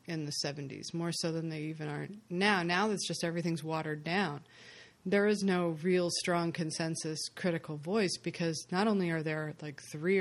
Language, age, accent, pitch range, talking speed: English, 30-49, American, 160-190 Hz, 180 wpm